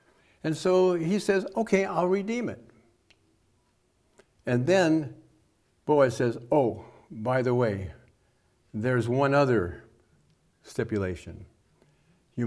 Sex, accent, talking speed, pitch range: male, American, 100 wpm, 110-135 Hz